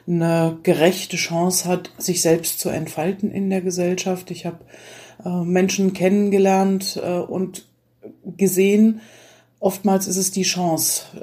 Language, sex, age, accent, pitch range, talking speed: German, female, 40-59, German, 160-190 Hz, 120 wpm